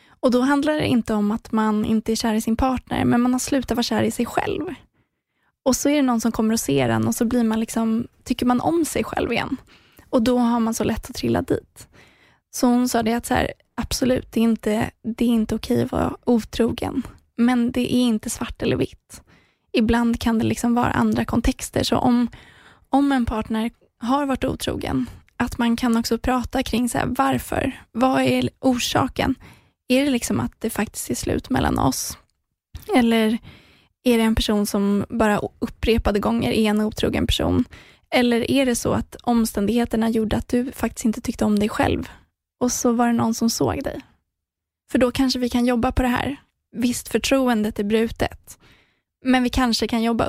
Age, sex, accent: 20-39, female, native